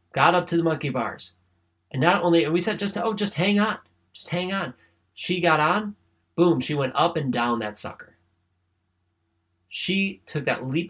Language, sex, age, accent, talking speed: English, male, 30-49, American, 195 wpm